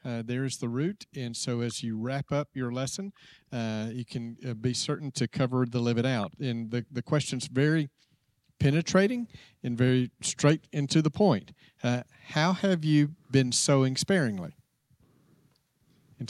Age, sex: 40-59, male